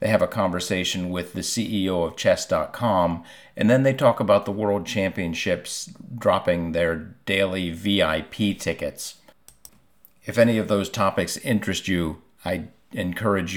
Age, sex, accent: 50-69, male, American